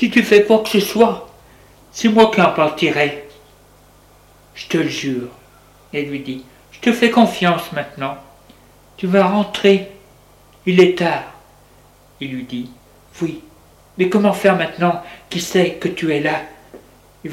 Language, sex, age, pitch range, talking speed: French, male, 60-79, 145-200 Hz, 155 wpm